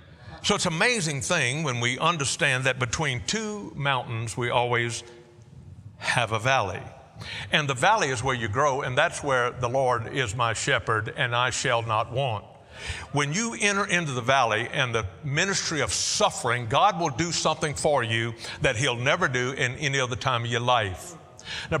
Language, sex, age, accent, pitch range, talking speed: English, male, 60-79, American, 115-150 Hz, 180 wpm